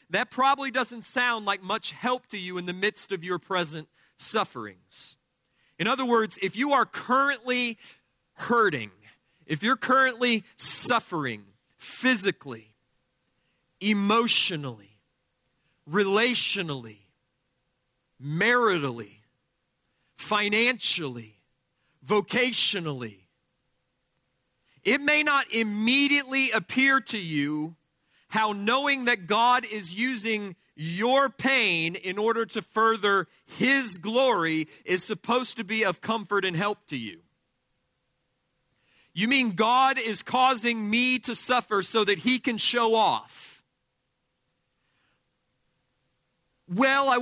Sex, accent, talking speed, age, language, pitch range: male, American, 105 wpm, 40-59, English, 170-250 Hz